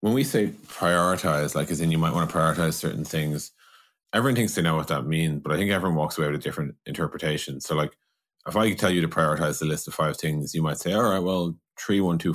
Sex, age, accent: male, 30-49, Irish